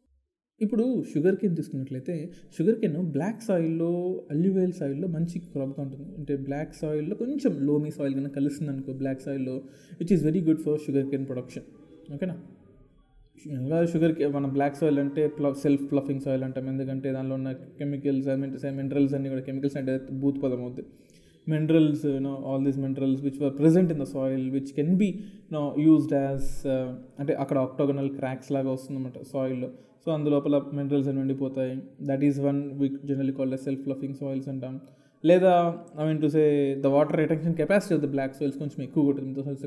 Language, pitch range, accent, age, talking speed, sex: Telugu, 135-160 Hz, native, 20-39, 175 wpm, male